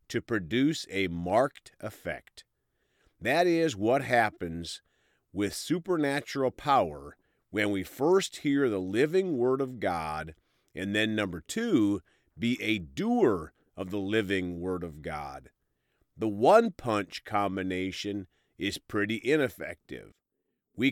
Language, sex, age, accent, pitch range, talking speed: English, male, 40-59, American, 95-135 Hz, 120 wpm